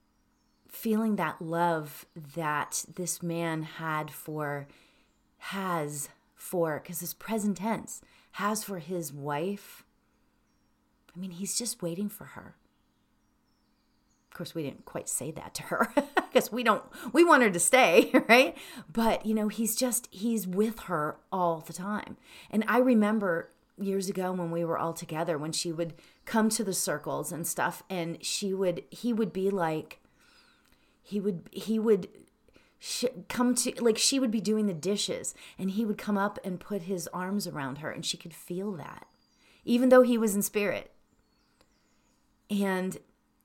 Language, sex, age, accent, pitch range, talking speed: English, female, 40-59, American, 170-220 Hz, 160 wpm